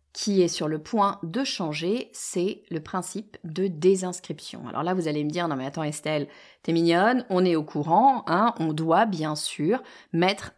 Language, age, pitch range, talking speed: French, 30-49, 160-225 Hz, 195 wpm